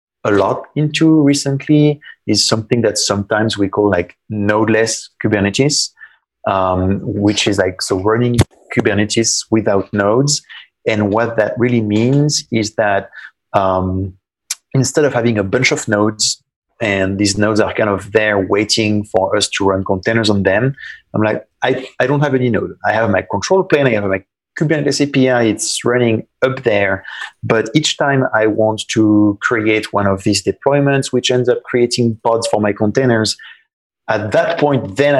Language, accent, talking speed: English, French, 165 wpm